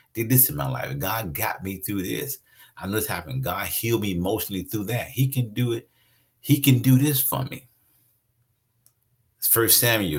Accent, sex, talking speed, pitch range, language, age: American, male, 190 wpm, 95-130 Hz, English, 50-69